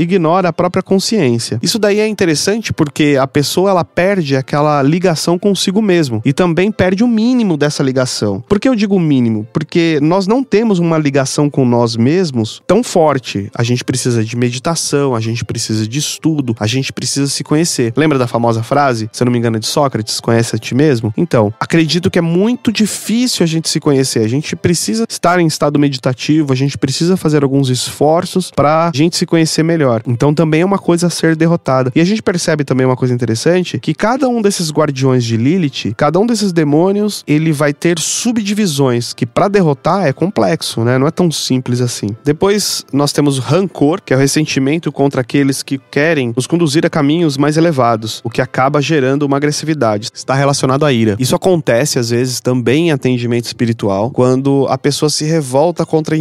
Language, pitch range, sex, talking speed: Portuguese, 130-170 Hz, male, 195 wpm